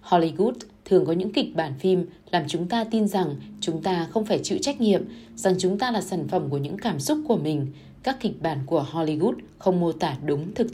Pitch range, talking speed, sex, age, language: 150-210 Hz, 230 wpm, female, 20-39, Vietnamese